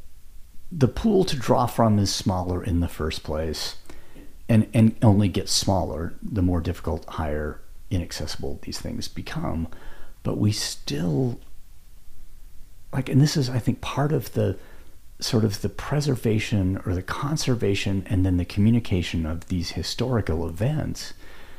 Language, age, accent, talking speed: English, 40-59, American, 140 wpm